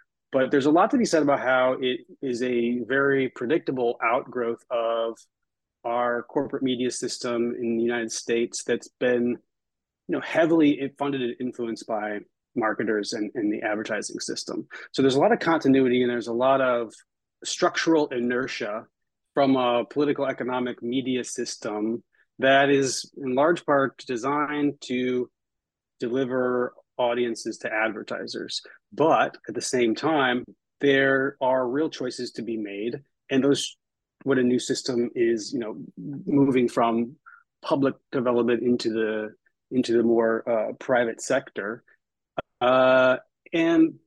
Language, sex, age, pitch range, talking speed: English, male, 30-49, 120-145 Hz, 140 wpm